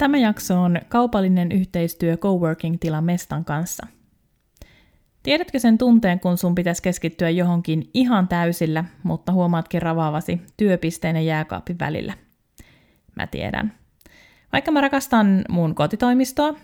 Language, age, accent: Finnish, 30-49, native